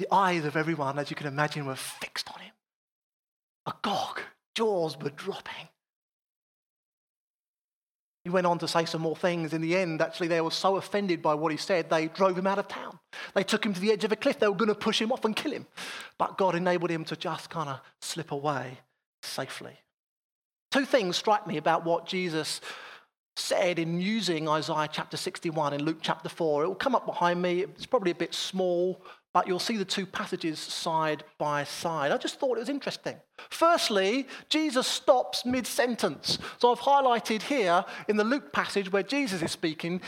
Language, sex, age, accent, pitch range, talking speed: English, male, 30-49, British, 165-235 Hz, 195 wpm